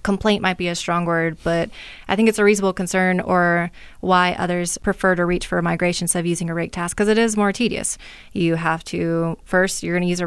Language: English